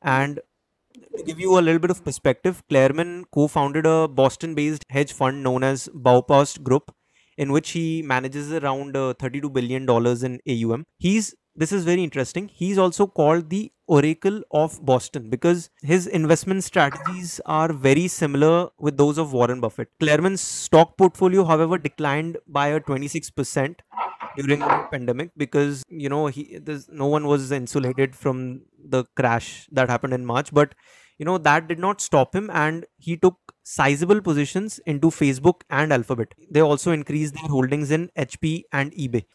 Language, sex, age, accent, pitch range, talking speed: English, male, 20-39, Indian, 140-175 Hz, 160 wpm